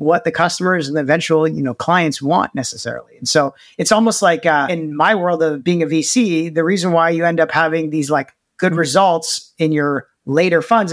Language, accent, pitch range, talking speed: English, American, 140-175 Hz, 215 wpm